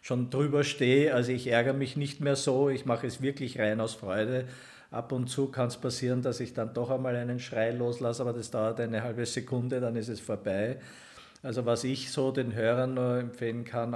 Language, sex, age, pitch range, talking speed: German, male, 50-69, 115-130 Hz, 215 wpm